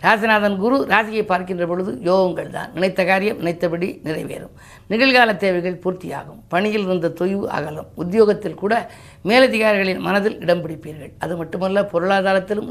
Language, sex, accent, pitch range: Tamil, female, native, 175-215 Hz